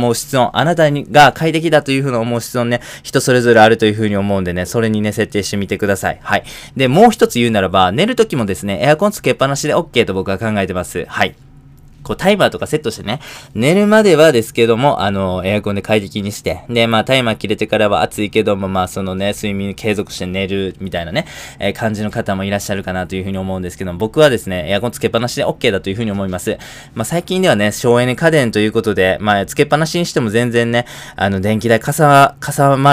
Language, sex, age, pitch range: Japanese, male, 20-39, 100-135 Hz